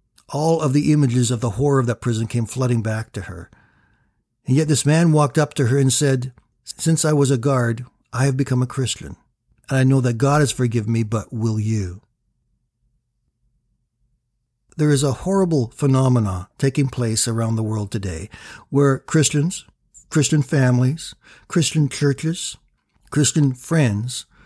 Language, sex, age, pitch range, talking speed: English, male, 60-79, 115-145 Hz, 160 wpm